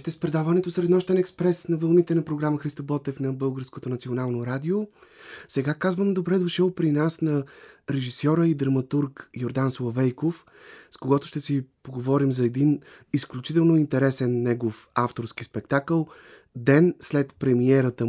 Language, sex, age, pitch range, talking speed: Bulgarian, male, 30-49, 120-145 Hz, 135 wpm